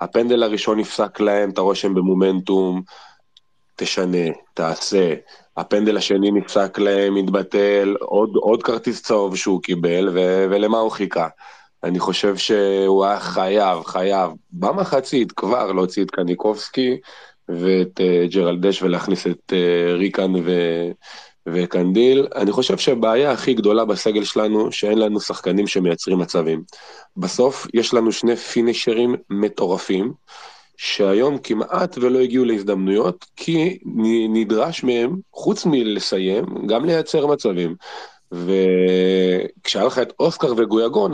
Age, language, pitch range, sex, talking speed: 20-39, Hebrew, 90-110 Hz, male, 120 wpm